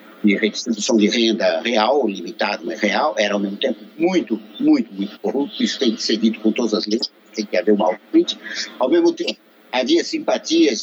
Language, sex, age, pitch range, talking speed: Portuguese, male, 60-79, 105-175 Hz, 200 wpm